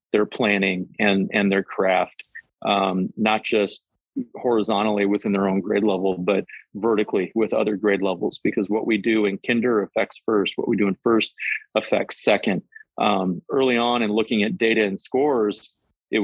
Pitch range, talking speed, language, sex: 100-115 Hz, 170 wpm, English, male